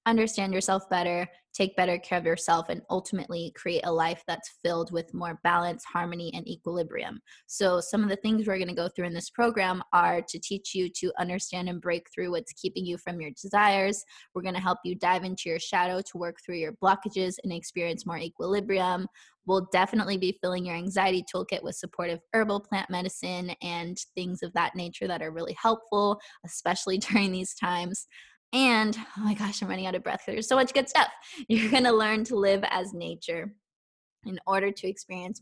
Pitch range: 175-215 Hz